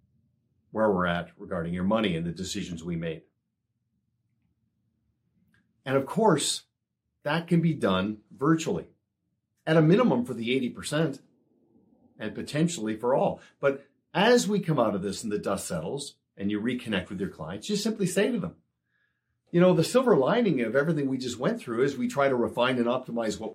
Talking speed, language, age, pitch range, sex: 180 wpm, English, 50-69, 110-160 Hz, male